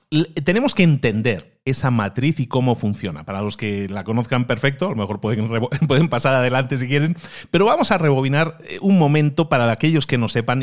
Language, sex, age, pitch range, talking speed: Spanish, male, 40-59, 115-160 Hz, 200 wpm